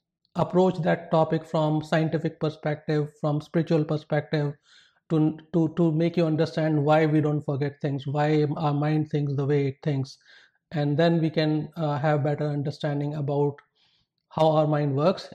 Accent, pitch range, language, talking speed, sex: Indian, 150-170 Hz, English, 160 wpm, male